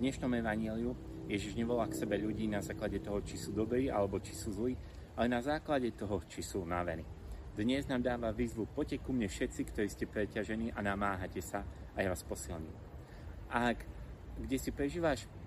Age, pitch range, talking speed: 30-49, 90-115 Hz, 180 wpm